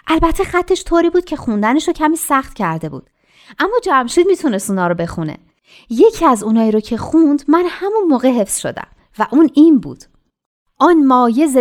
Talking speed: 175 wpm